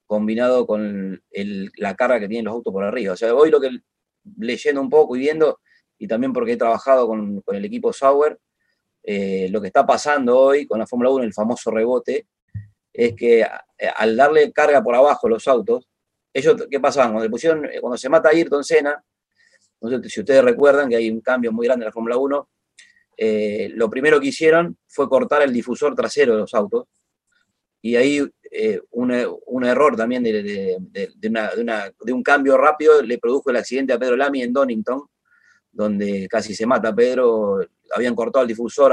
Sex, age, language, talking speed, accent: male, 30-49, Spanish, 195 wpm, Argentinian